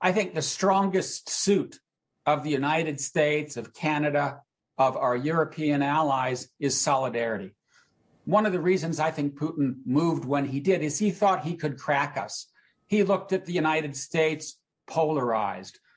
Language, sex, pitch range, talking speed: English, male, 135-160 Hz, 160 wpm